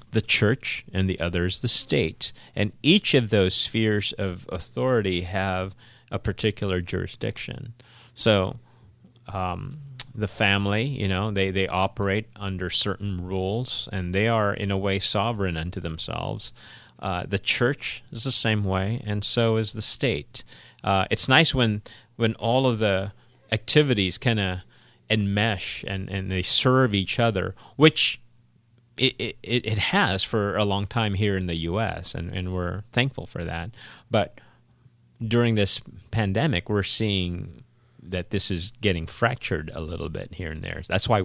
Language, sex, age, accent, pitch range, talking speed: English, male, 30-49, American, 95-120 Hz, 155 wpm